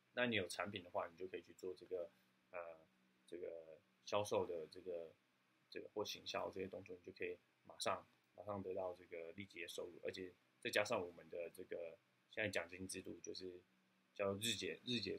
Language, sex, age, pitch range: Chinese, male, 20-39, 90-115 Hz